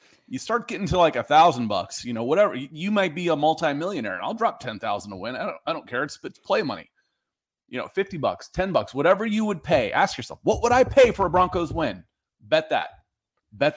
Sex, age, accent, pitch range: male, 30-49, American, 135-190 Hz